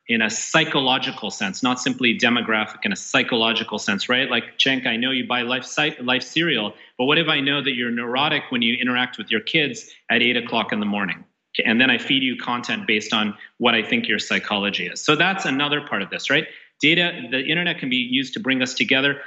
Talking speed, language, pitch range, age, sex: 225 wpm, English, 115-145 Hz, 30-49, male